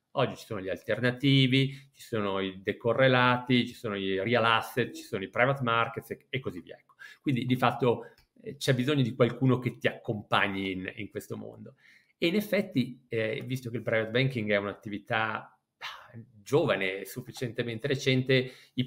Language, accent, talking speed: Italian, native, 170 wpm